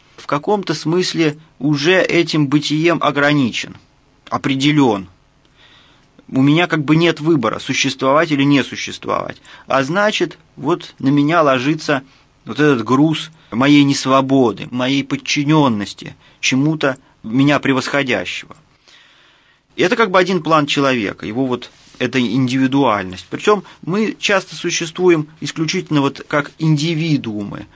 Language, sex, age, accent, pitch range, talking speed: Russian, male, 30-49, native, 130-155 Hz, 120 wpm